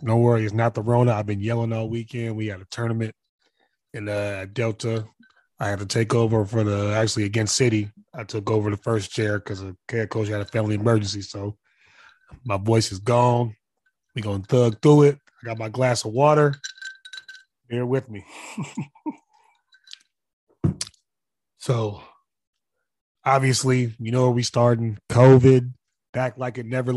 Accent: American